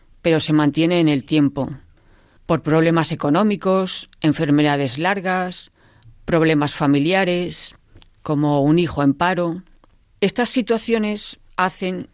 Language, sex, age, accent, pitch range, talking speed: Spanish, female, 40-59, Spanish, 140-180 Hz, 105 wpm